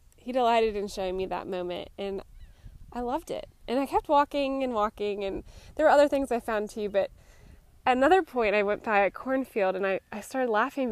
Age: 10-29